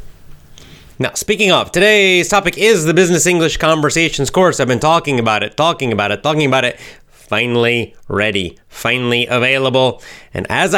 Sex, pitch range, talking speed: male, 110-160 Hz, 155 wpm